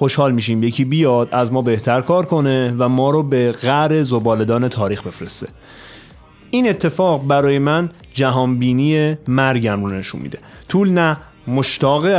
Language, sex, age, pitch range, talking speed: Persian, male, 30-49, 125-155 Hz, 145 wpm